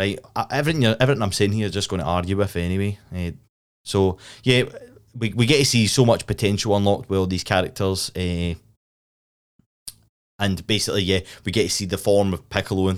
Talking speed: 185 wpm